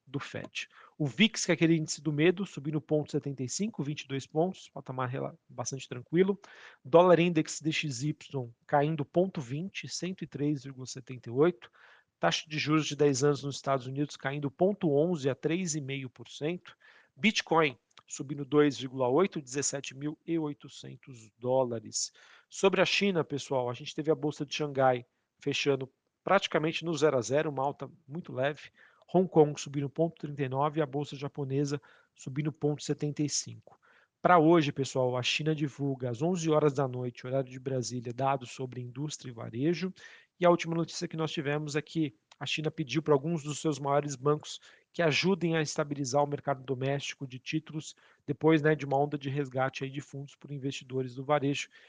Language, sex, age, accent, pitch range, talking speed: Portuguese, male, 40-59, Brazilian, 135-160 Hz, 150 wpm